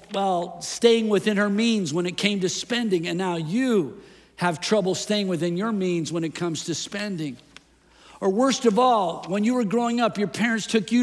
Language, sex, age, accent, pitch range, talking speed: English, male, 50-69, American, 175-225 Hz, 200 wpm